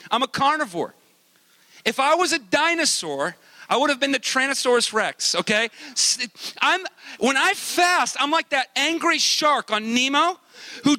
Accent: American